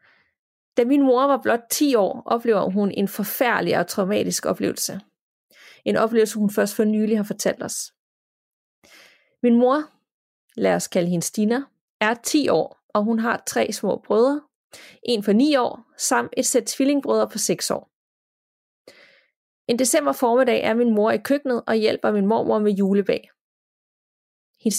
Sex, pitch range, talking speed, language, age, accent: female, 205-255 Hz, 160 wpm, Danish, 30-49, native